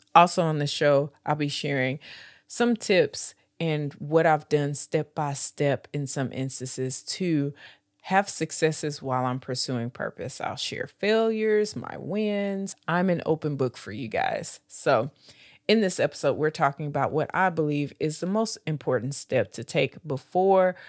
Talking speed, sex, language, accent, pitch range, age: 155 wpm, female, English, American, 140-185 Hz, 30-49